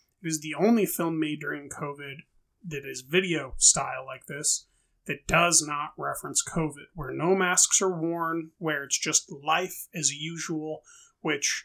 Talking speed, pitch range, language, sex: 155 wpm, 150-180 Hz, English, male